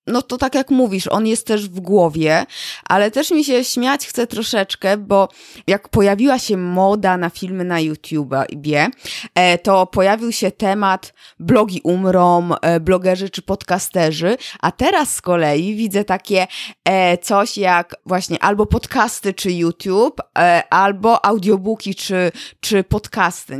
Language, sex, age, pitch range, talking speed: Polish, female, 20-39, 185-265 Hz, 135 wpm